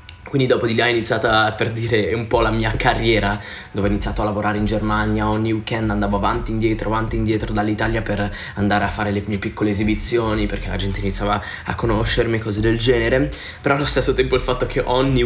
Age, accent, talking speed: 20-39, native, 210 wpm